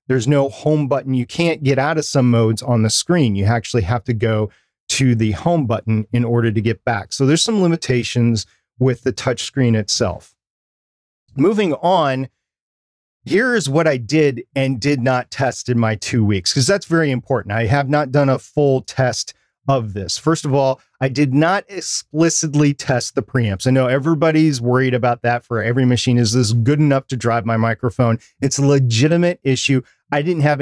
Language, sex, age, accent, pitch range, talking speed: English, male, 40-59, American, 115-140 Hz, 190 wpm